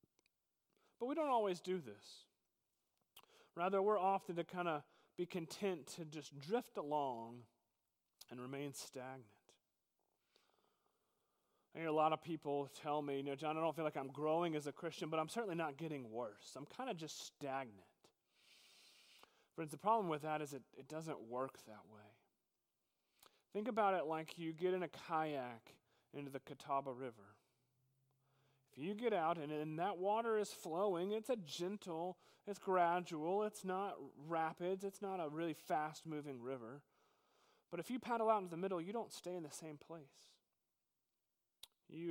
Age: 30-49